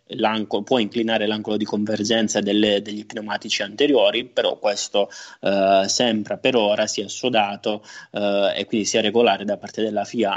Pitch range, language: 105-120 Hz, Italian